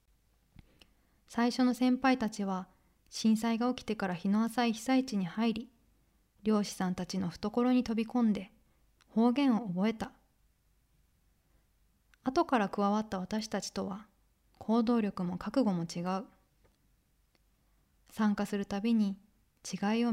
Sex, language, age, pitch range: female, Japanese, 20-39, 195-245 Hz